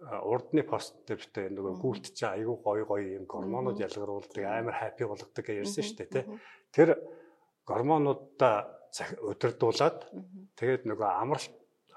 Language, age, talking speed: English, 50-69, 150 wpm